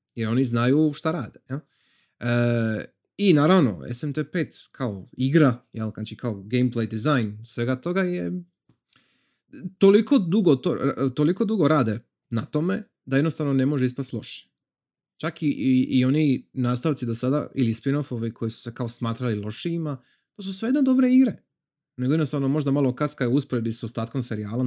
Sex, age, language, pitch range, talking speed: male, 30-49, Croatian, 115-150 Hz, 160 wpm